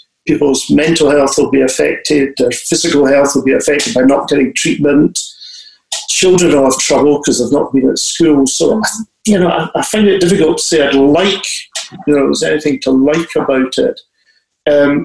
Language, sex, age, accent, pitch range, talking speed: English, male, 50-69, British, 135-175 Hz, 185 wpm